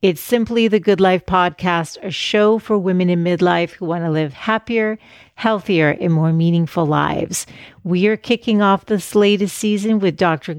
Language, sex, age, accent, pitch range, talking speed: English, female, 40-59, American, 170-205 Hz, 175 wpm